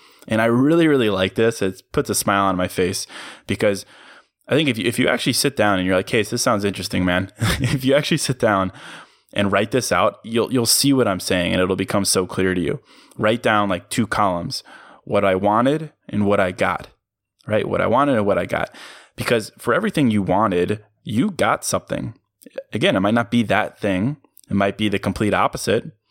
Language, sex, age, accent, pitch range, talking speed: English, male, 20-39, American, 100-125 Hz, 215 wpm